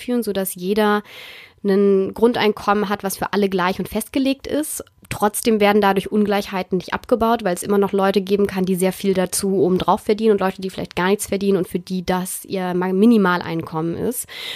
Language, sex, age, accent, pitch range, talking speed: German, female, 20-39, German, 190-225 Hz, 185 wpm